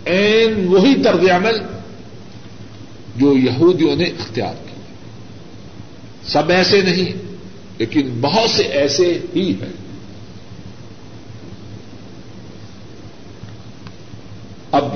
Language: Urdu